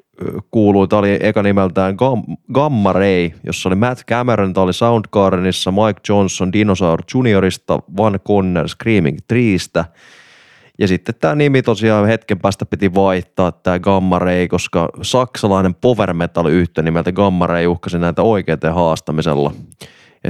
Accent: native